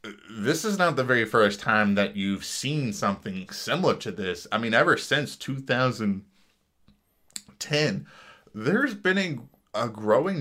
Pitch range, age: 100-125 Hz, 20-39